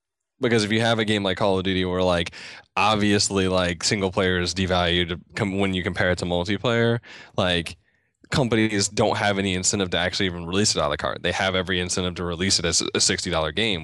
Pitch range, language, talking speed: 90-110 Hz, English, 215 wpm